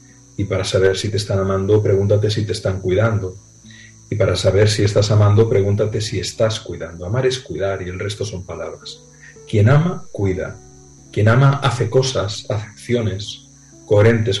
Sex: male